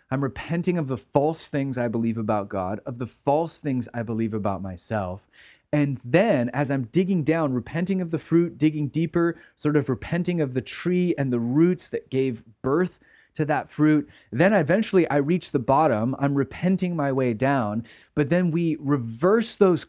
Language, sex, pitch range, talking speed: English, male, 125-165 Hz, 185 wpm